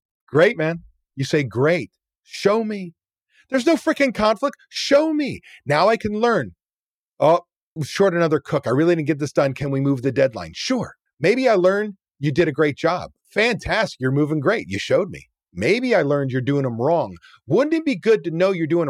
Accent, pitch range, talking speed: American, 140-195 Hz, 200 wpm